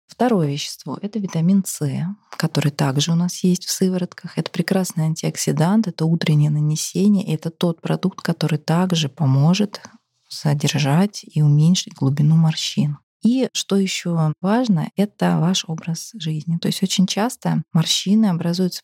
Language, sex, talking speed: Russian, female, 145 wpm